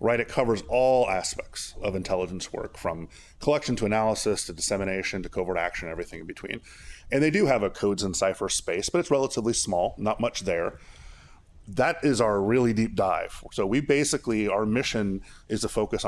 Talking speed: 185 wpm